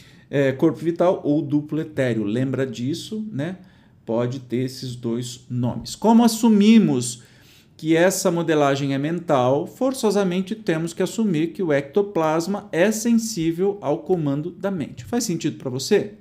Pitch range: 130-195 Hz